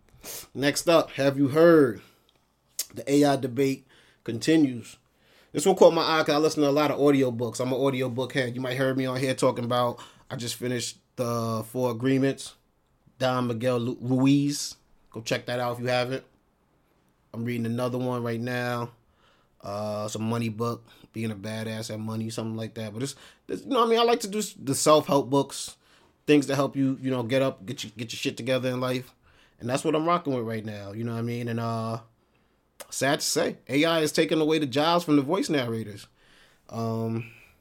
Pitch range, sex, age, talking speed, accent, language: 120-140 Hz, male, 30-49, 210 wpm, American, English